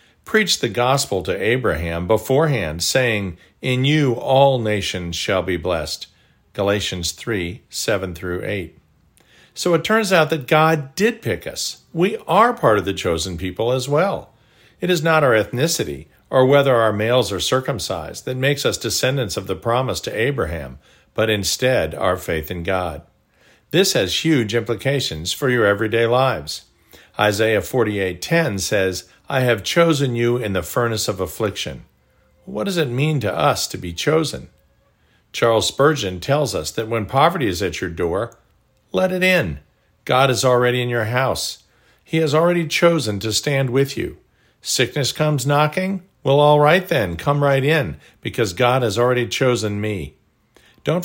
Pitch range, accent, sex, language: 100-145 Hz, American, male, English